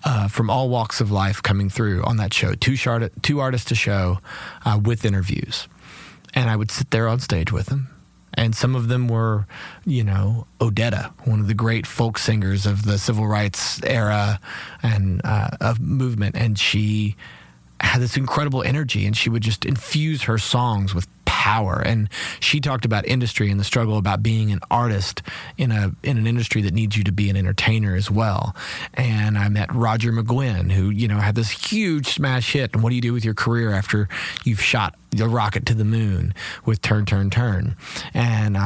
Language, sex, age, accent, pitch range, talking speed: English, male, 30-49, American, 105-125 Hz, 195 wpm